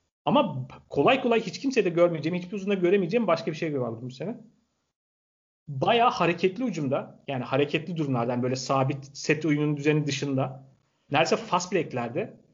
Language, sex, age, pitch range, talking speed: Turkish, male, 40-59, 140-210 Hz, 150 wpm